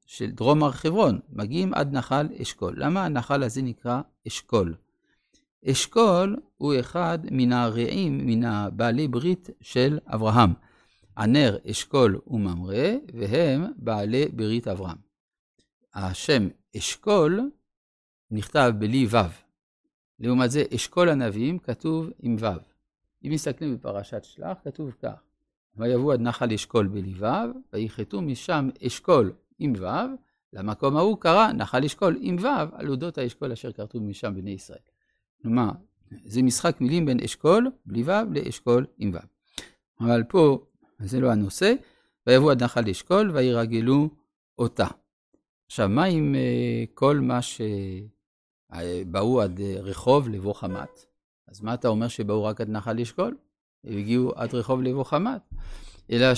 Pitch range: 105-145 Hz